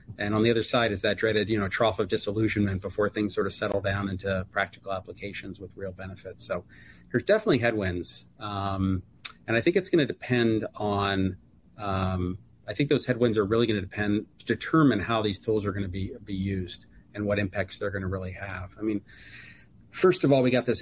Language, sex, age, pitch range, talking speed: English, male, 40-59, 95-110 Hz, 210 wpm